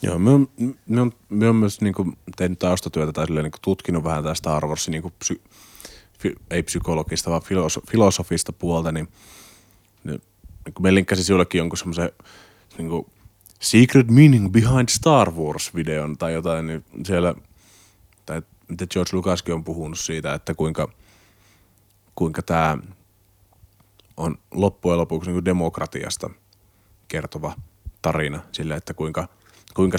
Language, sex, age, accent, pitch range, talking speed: Finnish, male, 30-49, native, 80-100 Hz, 135 wpm